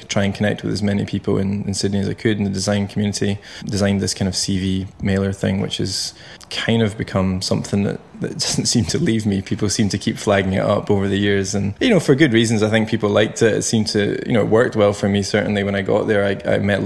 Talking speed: 270 wpm